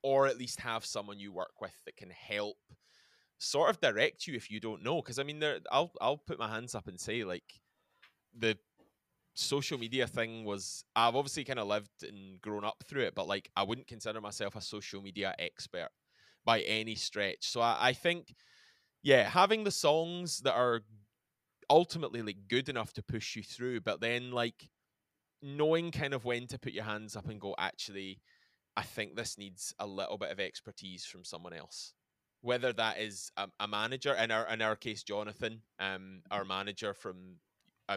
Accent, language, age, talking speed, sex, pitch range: British, English, 20-39, 195 wpm, male, 100-130 Hz